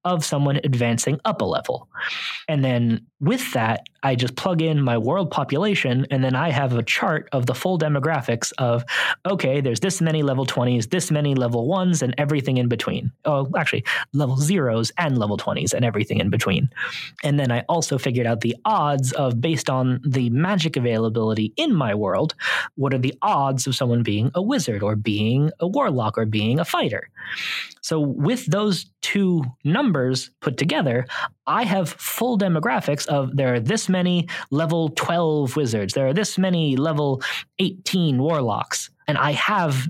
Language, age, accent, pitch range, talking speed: English, 20-39, American, 125-170 Hz, 175 wpm